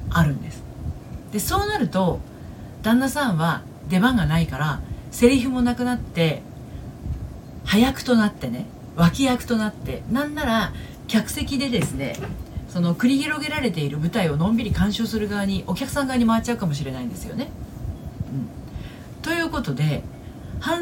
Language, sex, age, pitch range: Japanese, female, 40-59, 145-240 Hz